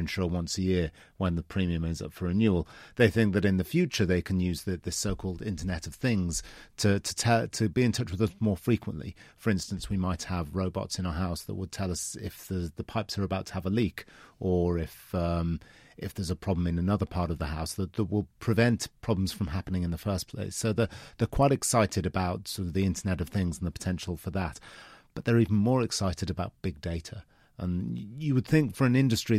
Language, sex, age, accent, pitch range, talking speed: English, male, 40-59, British, 90-105 Hz, 235 wpm